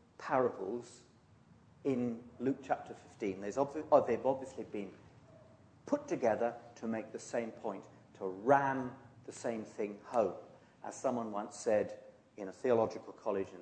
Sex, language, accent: male, English, British